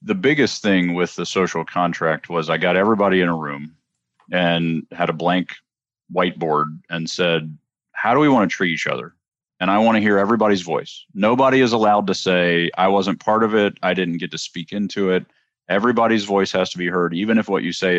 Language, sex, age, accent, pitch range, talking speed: English, male, 40-59, American, 85-100 Hz, 215 wpm